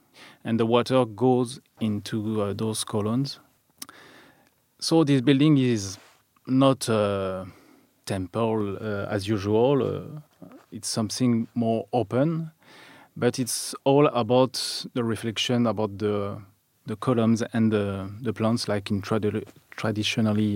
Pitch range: 105-125 Hz